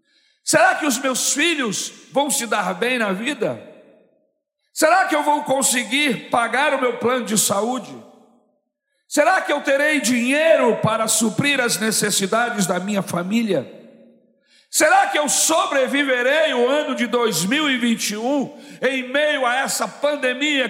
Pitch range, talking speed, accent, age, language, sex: 210-275 Hz, 135 wpm, Brazilian, 60-79, Portuguese, male